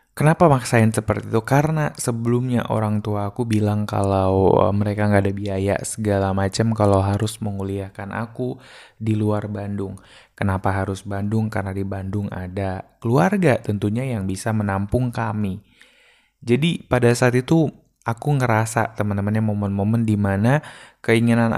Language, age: Indonesian, 20-39